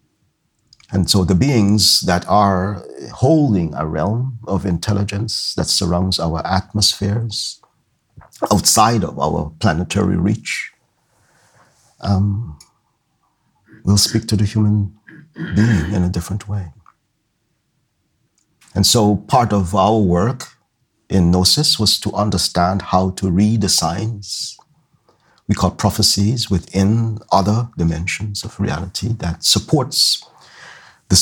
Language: English